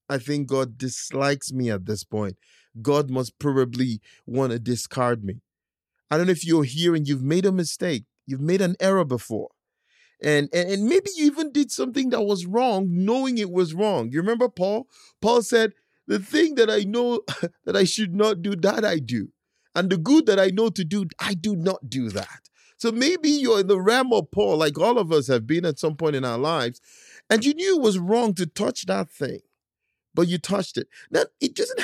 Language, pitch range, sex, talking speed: English, 150-230 Hz, male, 215 wpm